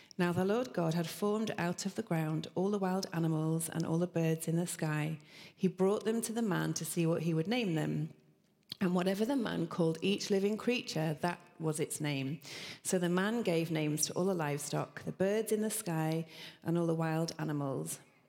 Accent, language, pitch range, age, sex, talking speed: British, English, 155-185 Hz, 40-59, female, 215 wpm